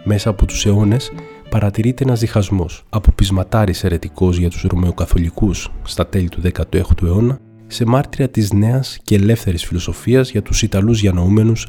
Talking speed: 155 wpm